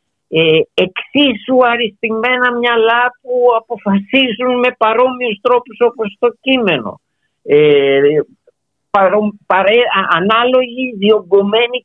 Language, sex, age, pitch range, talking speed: Greek, male, 50-69, 165-235 Hz, 65 wpm